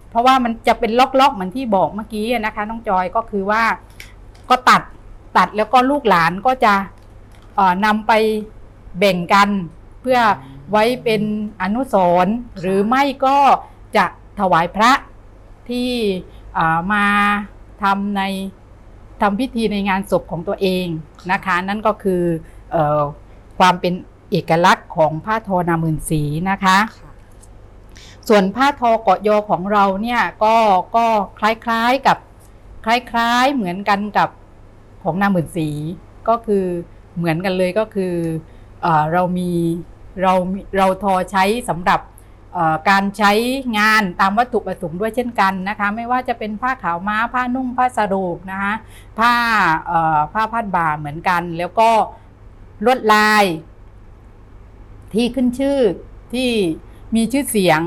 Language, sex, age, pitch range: English, female, 60-79, 170-225 Hz